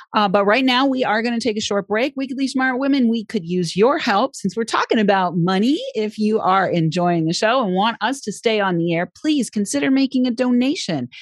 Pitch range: 180-255 Hz